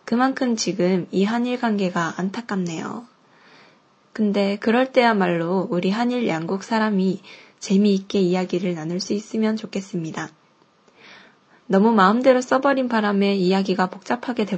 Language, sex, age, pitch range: Japanese, female, 20-39, 185-240 Hz